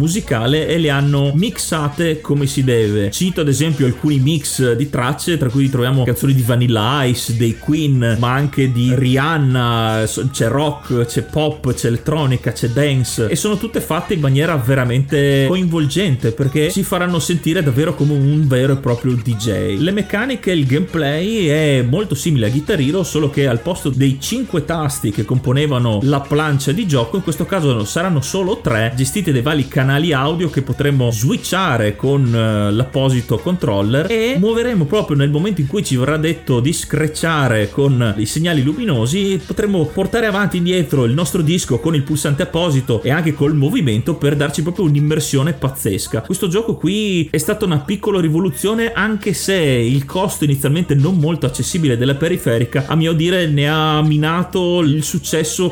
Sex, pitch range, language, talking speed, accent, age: male, 130-165 Hz, Italian, 170 wpm, native, 30-49